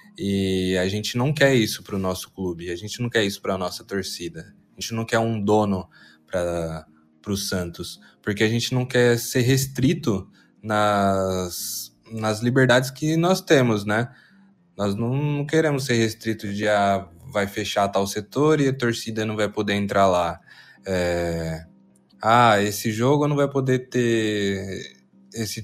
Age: 20-39